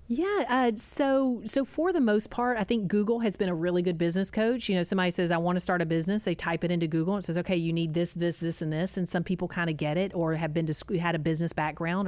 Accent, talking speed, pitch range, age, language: American, 300 wpm, 165-185 Hz, 40-59, English